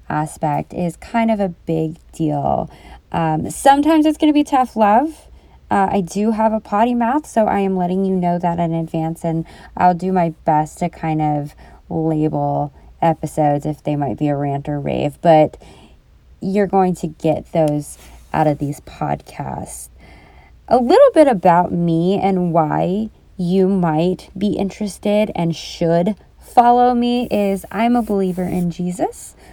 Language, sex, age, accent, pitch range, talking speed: English, female, 20-39, American, 160-200 Hz, 165 wpm